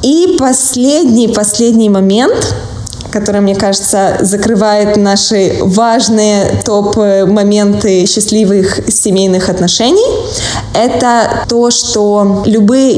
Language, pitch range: Russian, 190-230 Hz